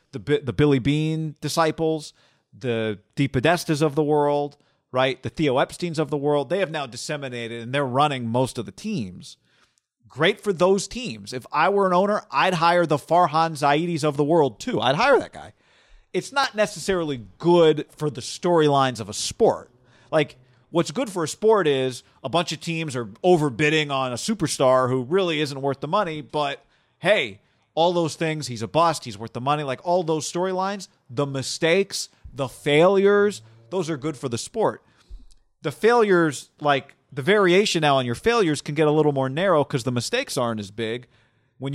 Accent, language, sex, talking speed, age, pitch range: American, English, male, 185 wpm, 40-59, 125-165 Hz